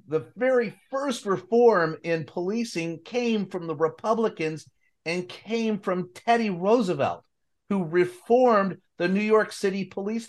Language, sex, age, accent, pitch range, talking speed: English, male, 50-69, American, 150-195 Hz, 130 wpm